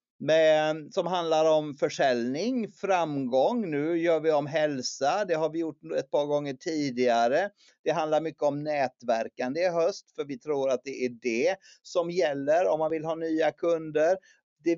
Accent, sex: native, male